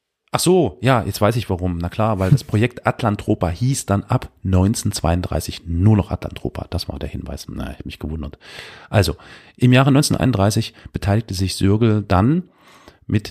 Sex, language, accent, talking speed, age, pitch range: male, German, German, 170 wpm, 40-59, 90-115 Hz